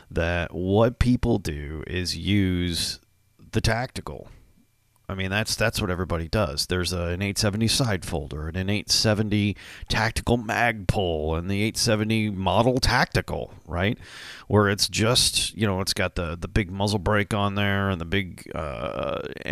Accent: American